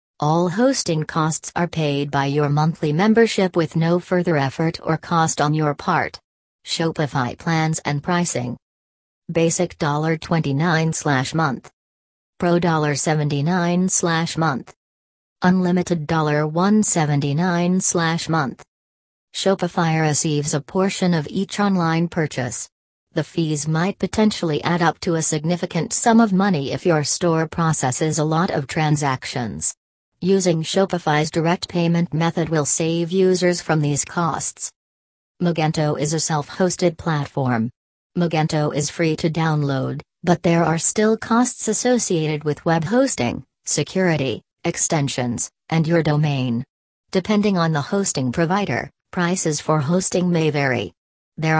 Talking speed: 120 wpm